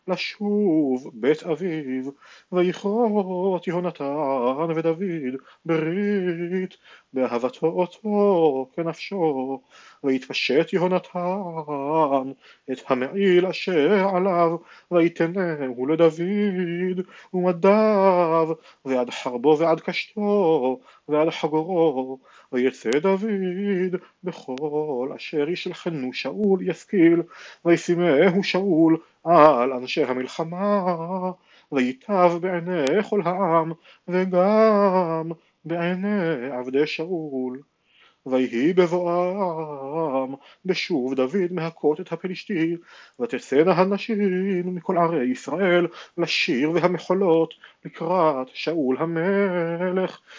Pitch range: 150-185 Hz